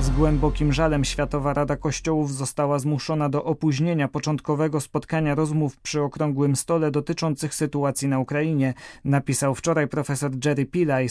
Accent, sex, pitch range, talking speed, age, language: native, male, 145-160 Hz, 135 wpm, 20-39, Polish